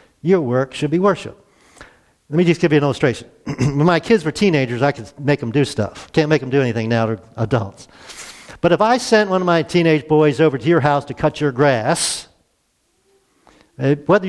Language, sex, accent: English, male, American